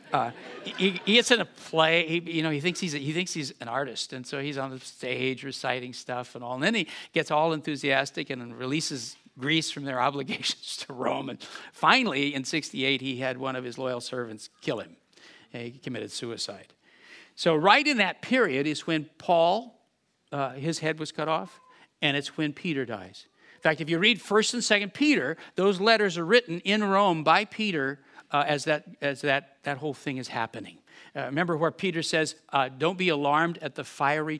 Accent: American